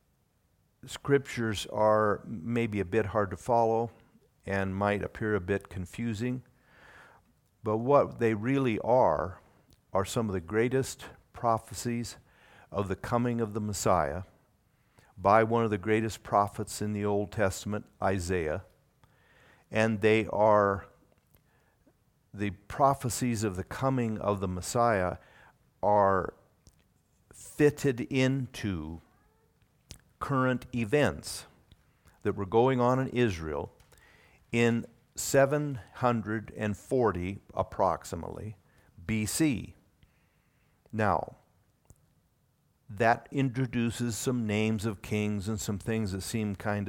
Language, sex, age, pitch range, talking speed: English, male, 50-69, 100-120 Hz, 105 wpm